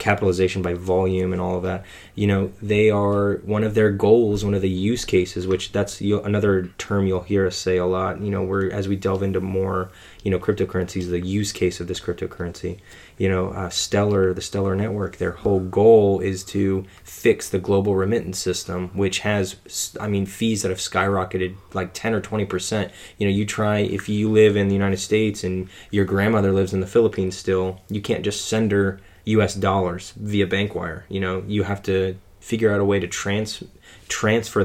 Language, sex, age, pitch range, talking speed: English, male, 20-39, 95-105 Hz, 205 wpm